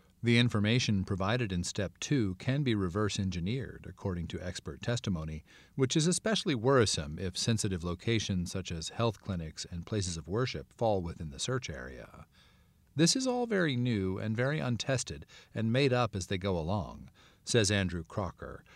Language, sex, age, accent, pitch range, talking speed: English, male, 40-59, American, 95-120 Hz, 165 wpm